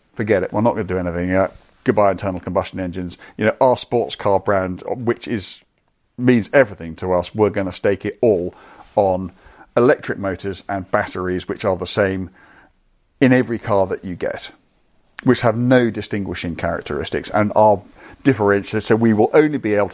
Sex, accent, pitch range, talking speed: male, British, 90-115 Hz, 180 wpm